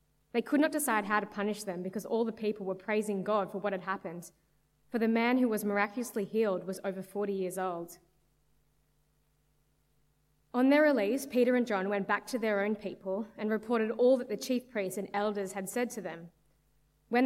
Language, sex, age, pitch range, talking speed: English, female, 20-39, 190-225 Hz, 200 wpm